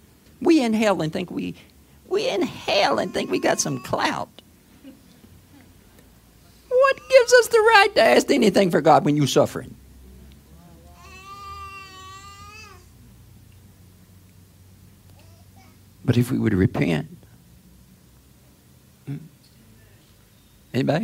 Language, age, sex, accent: English, 50-69, male, American